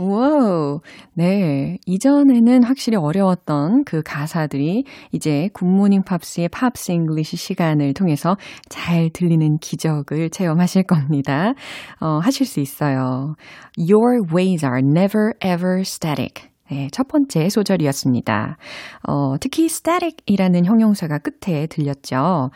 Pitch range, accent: 150-220 Hz, native